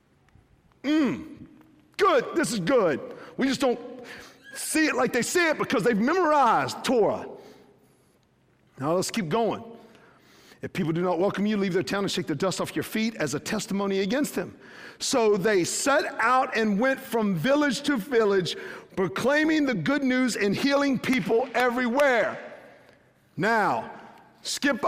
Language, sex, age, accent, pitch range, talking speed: English, male, 50-69, American, 210-280 Hz, 150 wpm